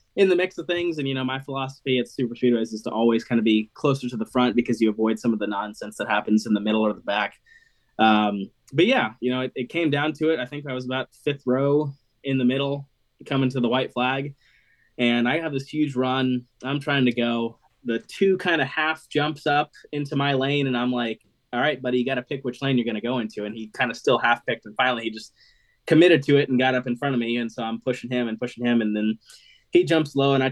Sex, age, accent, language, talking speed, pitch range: male, 20-39, American, English, 270 wpm, 115-140 Hz